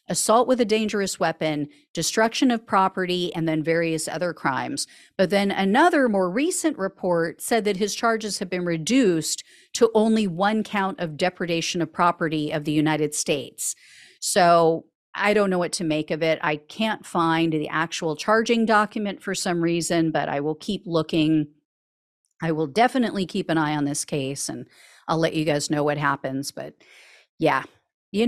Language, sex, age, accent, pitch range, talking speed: English, female, 50-69, American, 160-215 Hz, 175 wpm